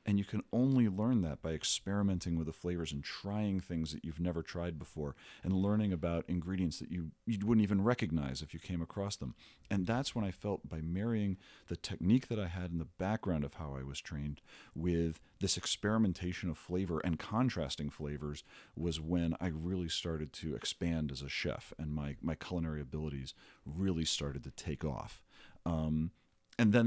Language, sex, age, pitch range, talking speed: English, male, 40-59, 80-110 Hz, 190 wpm